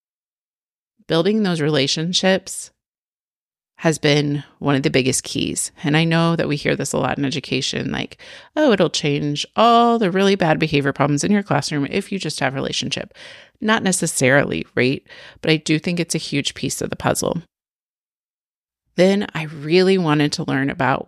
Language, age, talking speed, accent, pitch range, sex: English, 30-49, 170 wpm, American, 145-185 Hz, female